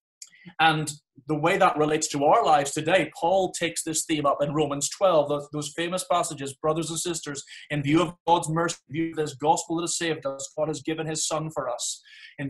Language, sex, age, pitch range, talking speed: English, male, 30-49, 145-165 Hz, 220 wpm